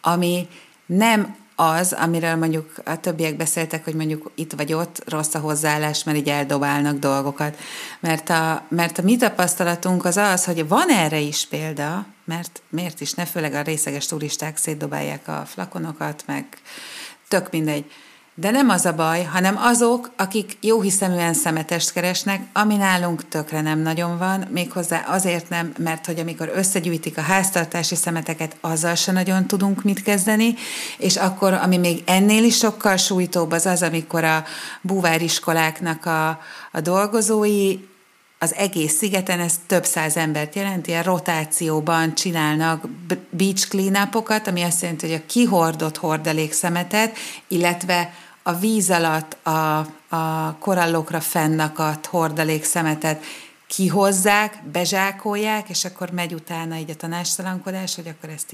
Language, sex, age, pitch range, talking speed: Hungarian, female, 30-49, 160-190 Hz, 140 wpm